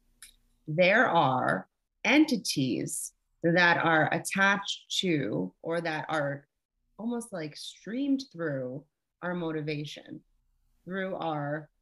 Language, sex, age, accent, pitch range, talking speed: English, female, 30-49, American, 140-165 Hz, 90 wpm